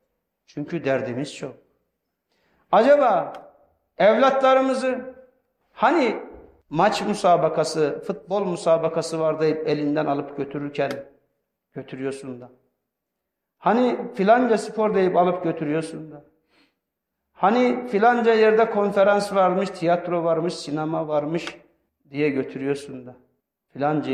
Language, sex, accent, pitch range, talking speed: Turkish, male, native, 130-175 Hz, 90 wpm